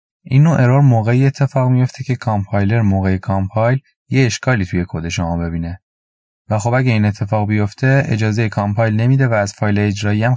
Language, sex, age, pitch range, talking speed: Persian, male, 20-39, 95-125 Hz, 175 wpm